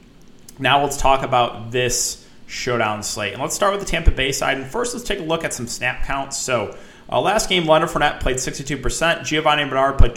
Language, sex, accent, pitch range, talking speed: English, male, American, 120-155 Hz, 215 wpm